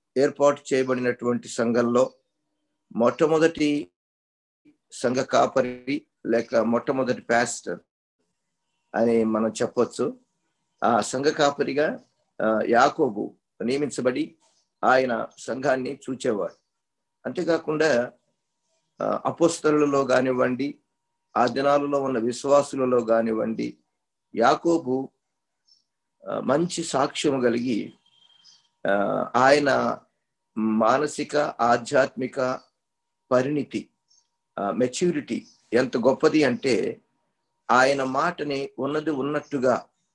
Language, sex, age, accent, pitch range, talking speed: Telugu, male, 50-69, native, 125-150 Hz, 65 wpm